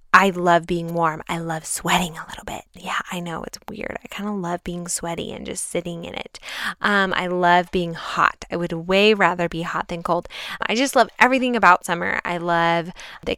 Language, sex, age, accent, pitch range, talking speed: English, female, 10-29, American, 170-220 Hz, 215 wpm